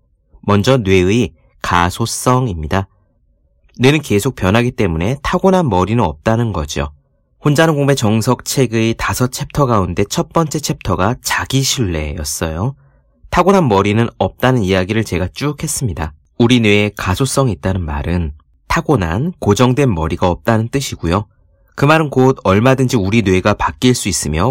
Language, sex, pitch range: Korean, male, 85-130 Hz